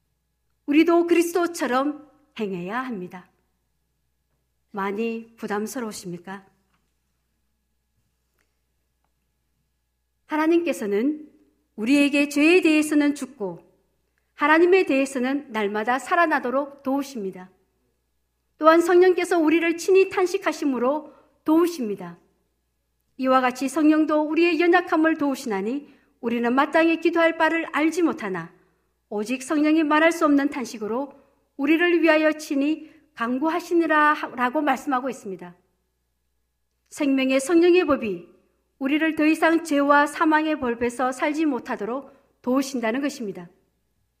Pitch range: 195-310 Hz